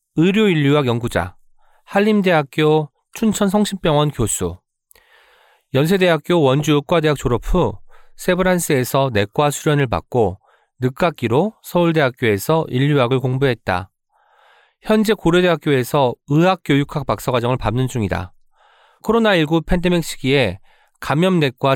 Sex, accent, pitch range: male, native, 130-185 Hz